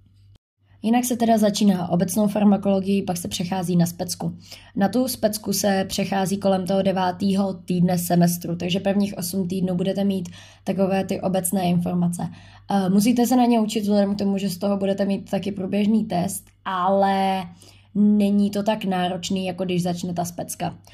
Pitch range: 175-195 Hz